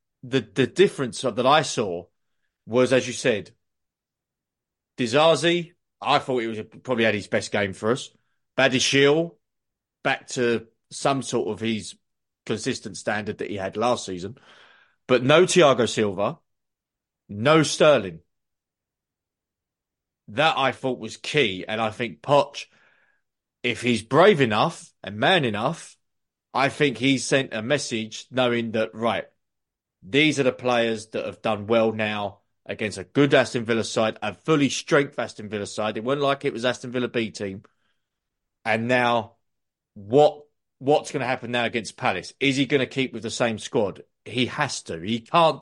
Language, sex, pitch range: English, male, 110-140 Hz